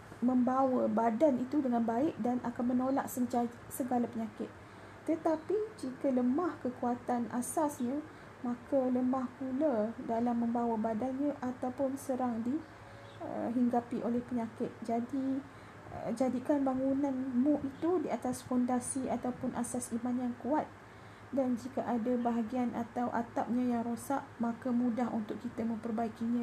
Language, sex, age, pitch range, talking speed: Malay, female, 30-49, 235-265 Hz, 125 wpm